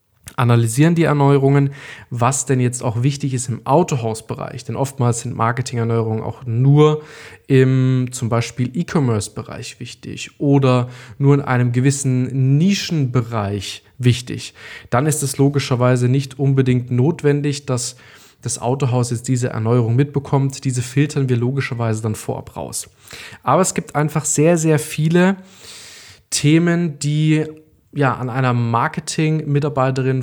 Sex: male